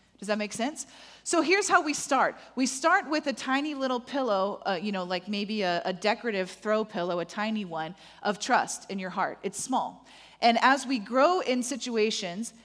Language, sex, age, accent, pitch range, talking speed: English, female, 30-49, American, 205-260 Hz, 200 wpm